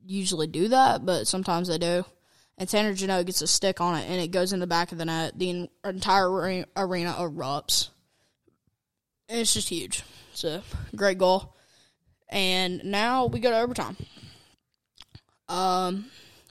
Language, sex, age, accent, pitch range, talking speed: English, female, 10-29, American, 175-195 Hz, 155 wpm